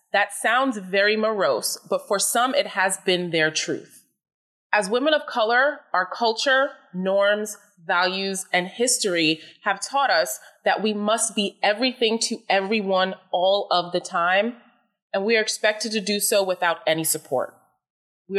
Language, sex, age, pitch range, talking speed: English, female, 30-49, 180-230 Hz, 155 wpm